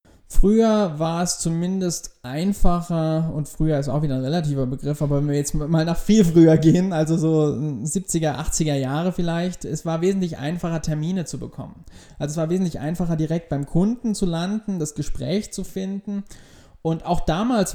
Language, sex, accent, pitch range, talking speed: German, male, German, 145-170 Hz, 175 wpm